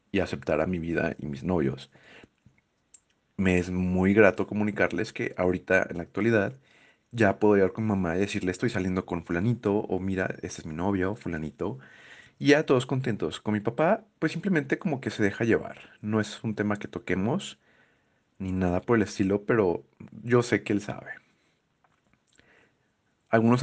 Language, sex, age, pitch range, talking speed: Spanish, male, 30-49, 90-115 Hz, 180 wpm